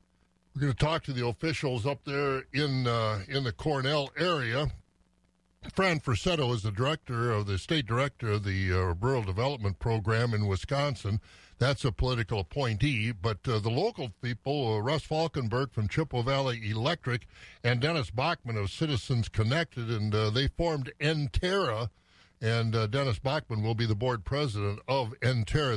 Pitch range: 115-160 Hz